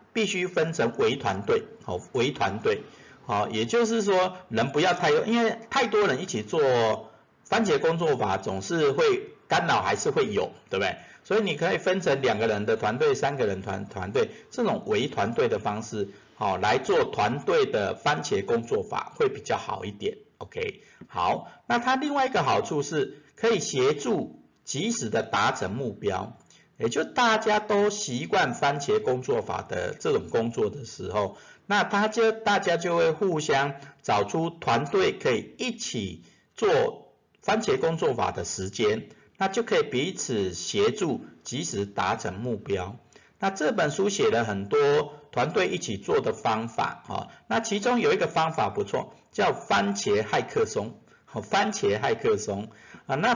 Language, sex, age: Chinese, male, 50-69